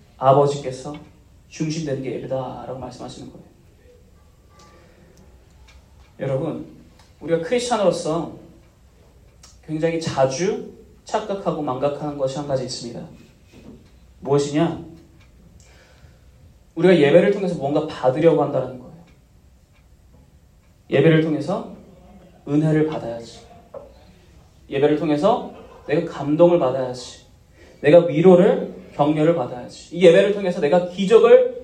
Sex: male